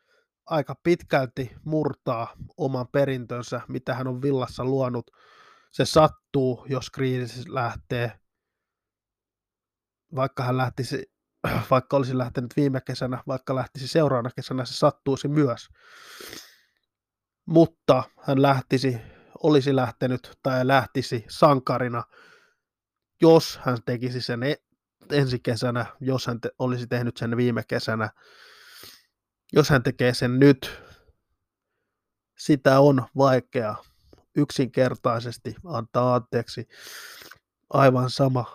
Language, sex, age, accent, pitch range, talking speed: Finnish, male, 20-39, native, 120-140 Hz, 100 wpm